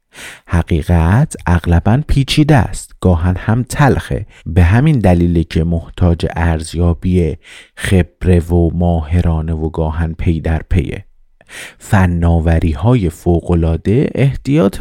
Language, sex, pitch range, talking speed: Persian, male, 80-100 Hz, 95 wpm